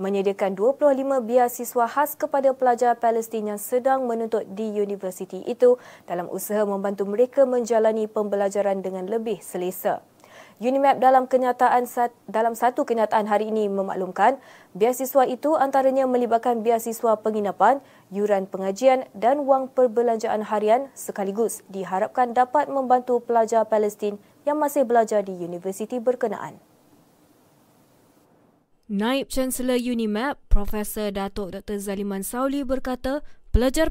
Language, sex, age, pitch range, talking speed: Malay, female, 20-39, 205-255 Hz, 115 wpm